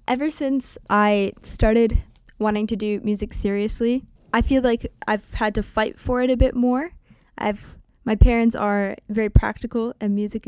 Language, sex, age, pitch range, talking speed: English, female, 10-29, 195-220 Hz, 165 wpm